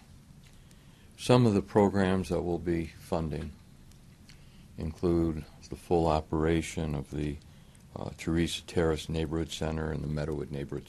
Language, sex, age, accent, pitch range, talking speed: English, male, 60-79, American, 75-85 Hz, 125 wpm